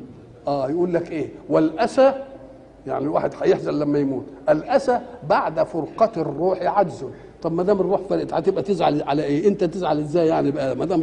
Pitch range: 160-210 Hz